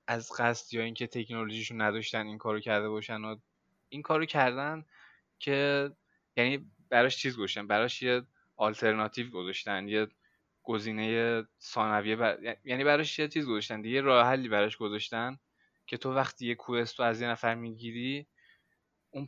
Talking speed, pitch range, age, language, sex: 145 wpm, 115-140 Hz, 10-29, Persian, male